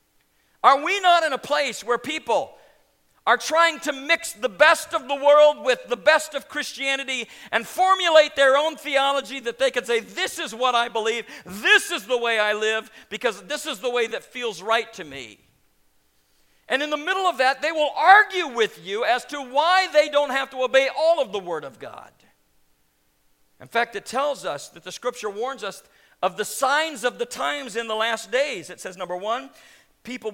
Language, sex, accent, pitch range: English, male, American, 195-285 Hz